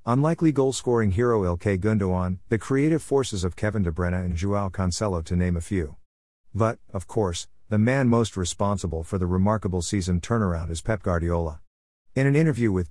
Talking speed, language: 175 wpm, English